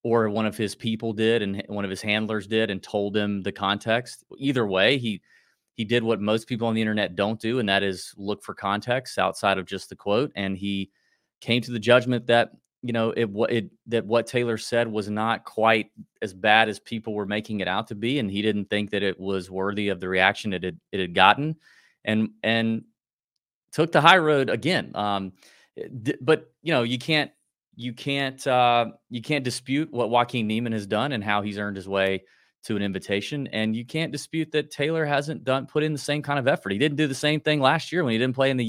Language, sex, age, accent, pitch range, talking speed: English, male, 30-49, American, 105-135 Hz, 230 wpm